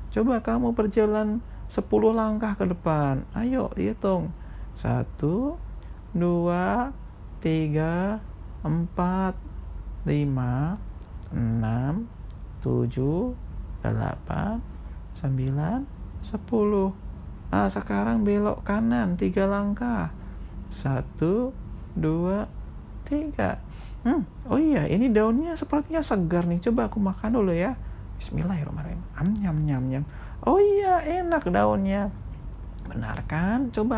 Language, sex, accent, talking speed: Indonesian, male, native, 95 wpm